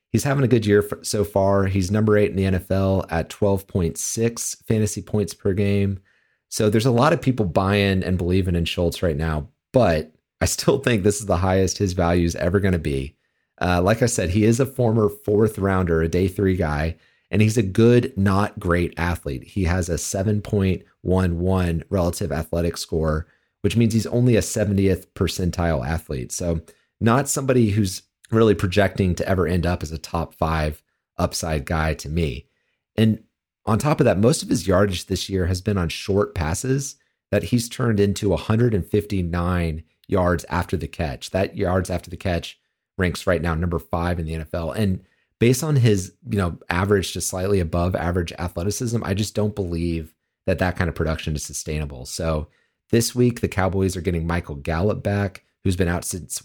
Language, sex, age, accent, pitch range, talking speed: English, male, 30-49, American, 85-105 Hz, 185 wpm